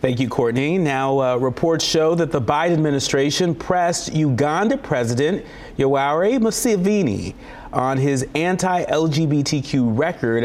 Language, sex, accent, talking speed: English, male, American, 115 wpm